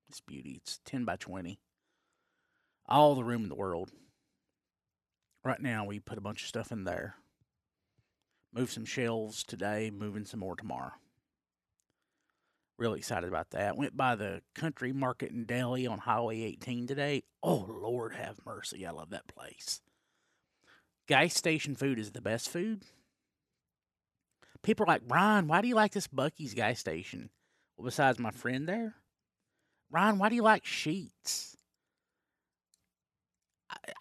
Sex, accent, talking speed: male, American, 150 wpm